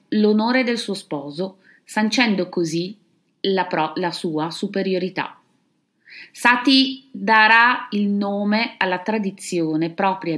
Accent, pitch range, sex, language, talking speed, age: native, 160-225 Hz, female, Italian, 100 wpm, 30-49